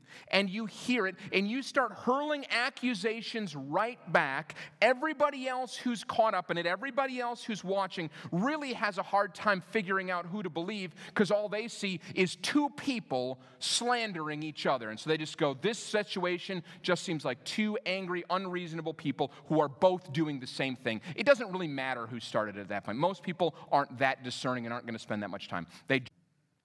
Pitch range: 130-195 Hz